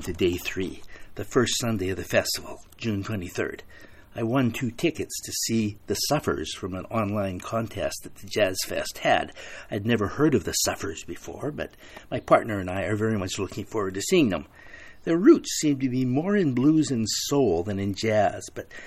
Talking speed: 195 wpm